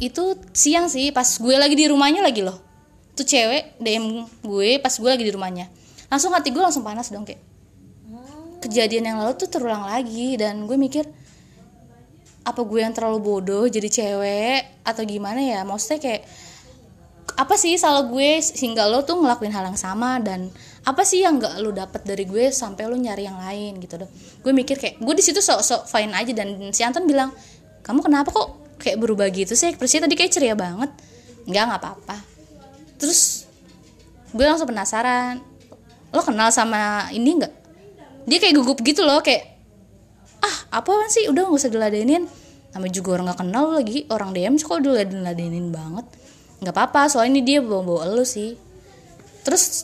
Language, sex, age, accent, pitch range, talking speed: Indonesian, female, 20-39, native, 200-285 Hz, 175 wpm